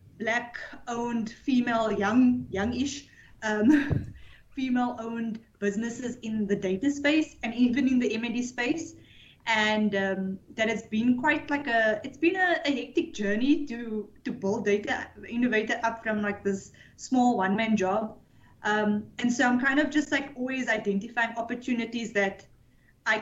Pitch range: 200-245 Hz